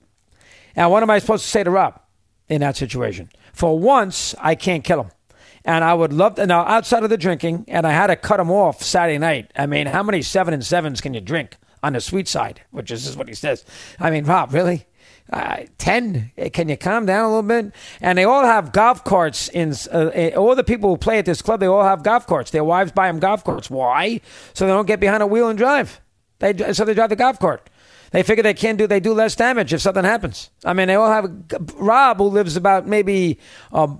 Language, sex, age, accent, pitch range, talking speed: English, male, 40-59, American, 165-225 Hz, 240 wpm